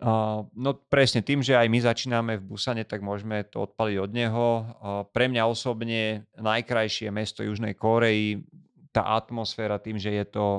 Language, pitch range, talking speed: Slovak, 105-115 Hz, 160 wpm